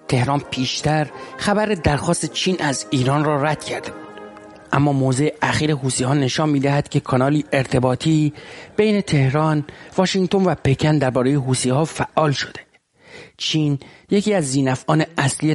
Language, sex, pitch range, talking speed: English, male, 130-155 Hz, 135 wpm